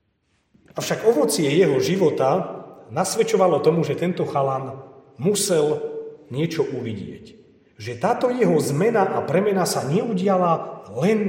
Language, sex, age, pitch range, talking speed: Slovak, male, 40-59, 145-200 Hz, 110 wpm